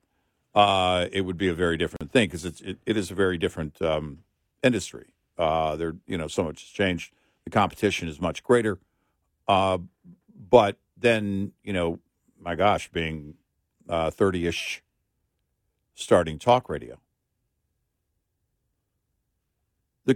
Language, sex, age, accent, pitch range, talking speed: English, male, 50-69, American, 85-110 Hz, 135 wpm